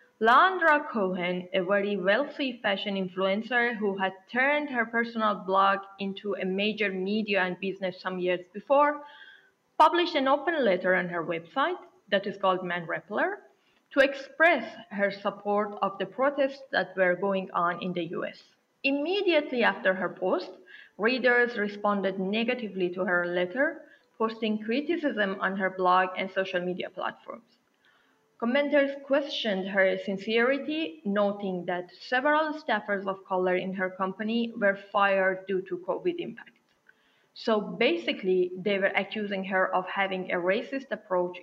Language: Italian